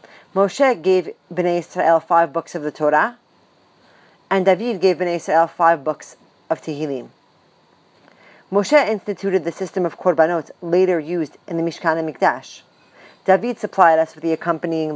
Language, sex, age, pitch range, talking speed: English, female, 40-59, 160-205 Hz, 150 wpm